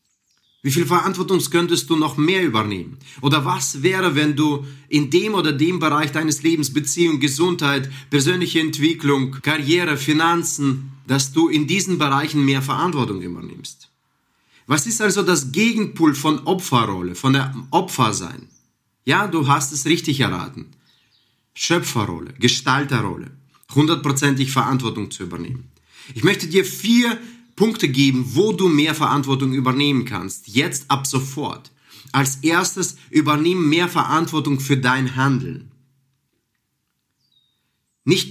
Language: German